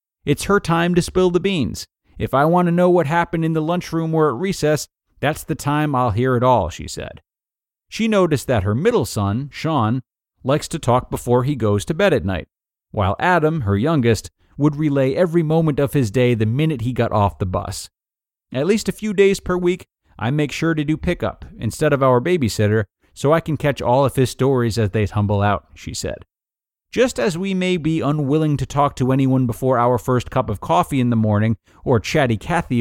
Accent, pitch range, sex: American, 110-160 Hz, male